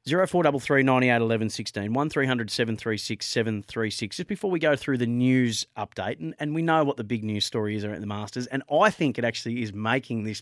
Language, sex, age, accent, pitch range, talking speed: English, male, 30-49, Australian, 115-150 Hz, 190 wpm